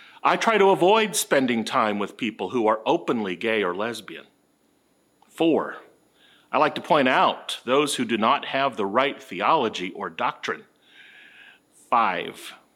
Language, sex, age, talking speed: English, male, 40-59, 145 wpm